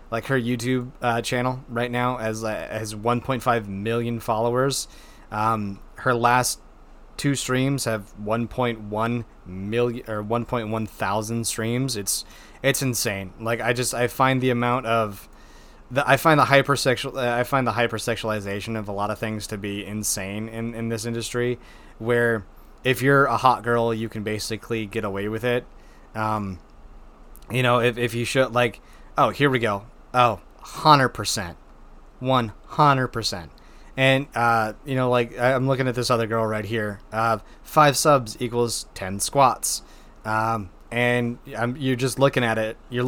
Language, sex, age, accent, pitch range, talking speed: English, male, 20-39, American, 110-130 Hz, 160 wpm